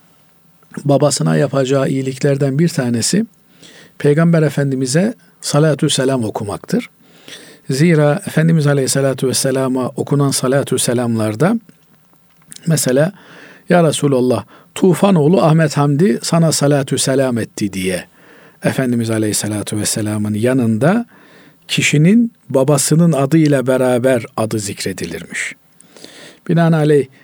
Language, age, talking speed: Turkish, 50-69, 85 wpm